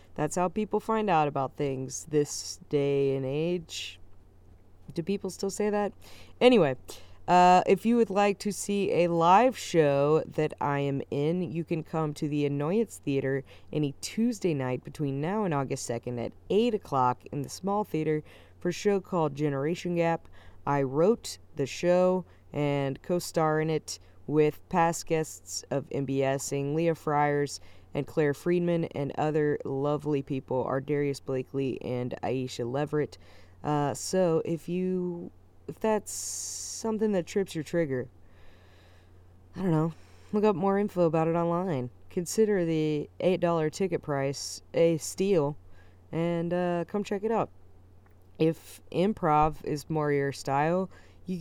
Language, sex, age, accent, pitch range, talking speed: English, female, 20-39, American, 135-180 Hz, 150 wpm